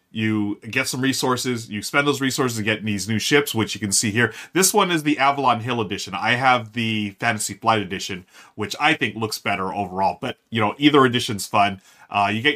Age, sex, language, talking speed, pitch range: 30-49, male, English, 220 wpm, 105-140 Hz